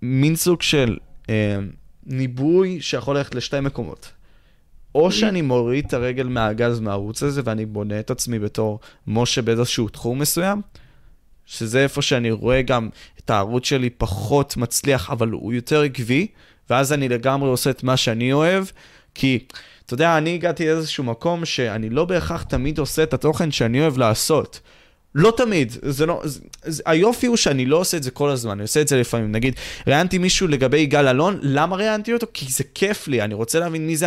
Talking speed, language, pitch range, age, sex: 180 wpm, Hebrew, 120-170 Hz, 20-39, male